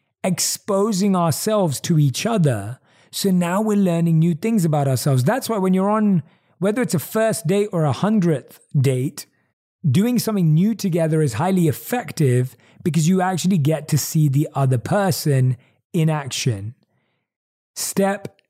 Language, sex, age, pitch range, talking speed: English, male, 30-49, 135-180 Hz, 150 wpm